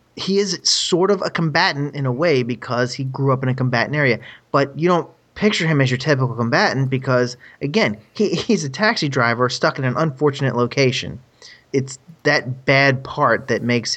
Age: 30-49